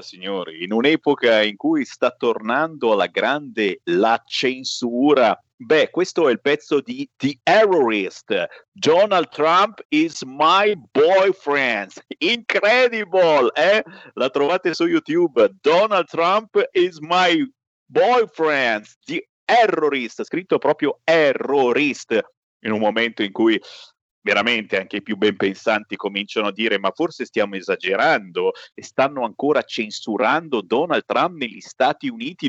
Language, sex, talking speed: Italian, male, 125 wpm